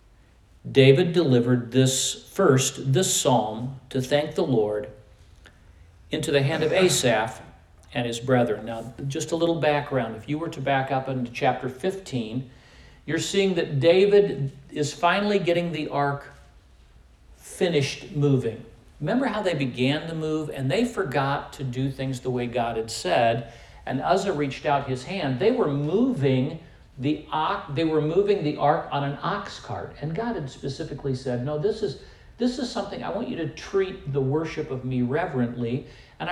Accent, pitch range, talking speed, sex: American, 120-155 Hz, 170 wpm, male